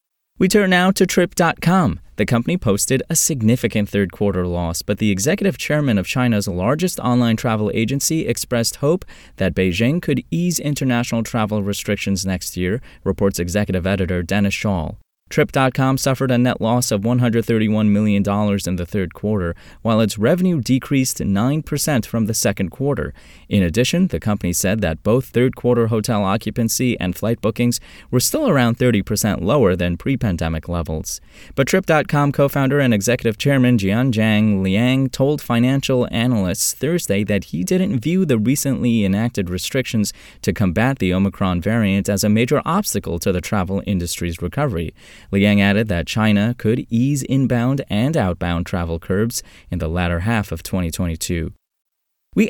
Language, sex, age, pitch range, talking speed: English, male, 20-39, 95-130 Hz, 150 wpm